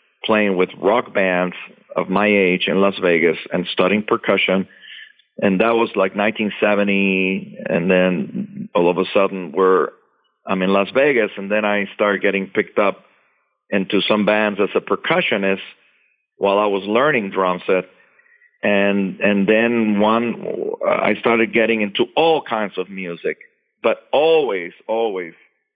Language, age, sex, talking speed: English, 40-59, male, 145 wpm